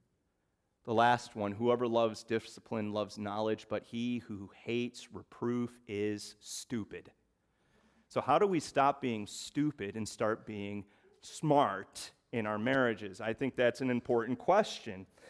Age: 30-49